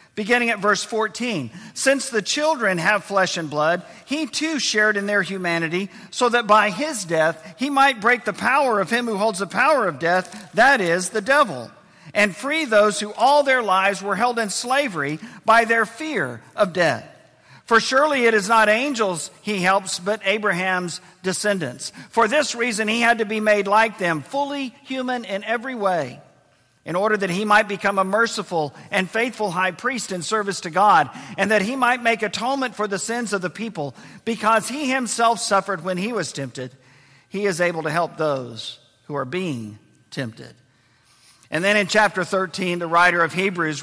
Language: English